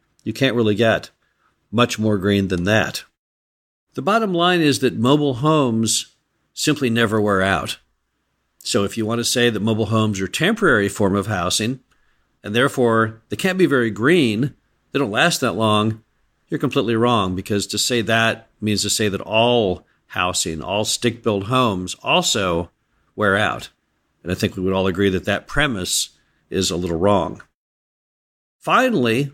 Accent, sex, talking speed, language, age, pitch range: American, male, 165 wpm, English, 50-69, 105-130 Hz